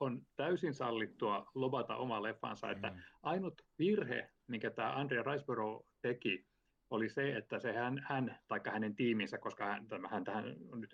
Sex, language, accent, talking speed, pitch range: male, Finnish, native, 150 wpm, 110-140 Hz